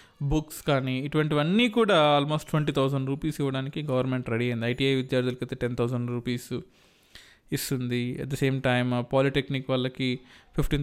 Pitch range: 130-160 Hz